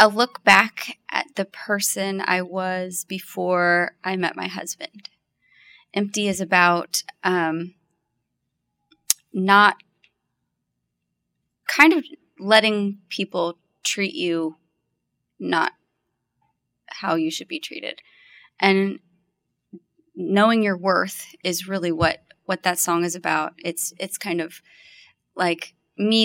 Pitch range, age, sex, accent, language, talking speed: 170-200 Hz, 20-39, female, American, English, 110 wpm